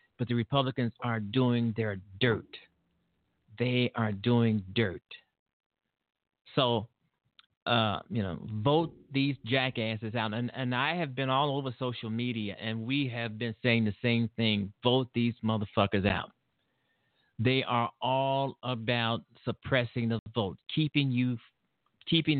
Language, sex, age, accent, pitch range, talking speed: English, male, 50-69, American, 115-150 Hz, 135 wpm